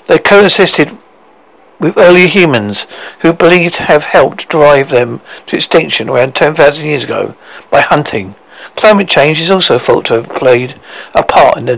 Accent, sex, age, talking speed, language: British, male, 60-79, 165 wpm, English